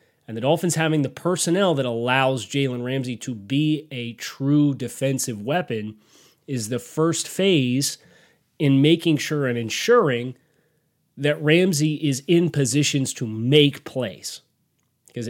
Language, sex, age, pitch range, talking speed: English, male, 30-49, 120-150 Hz, 135 wpm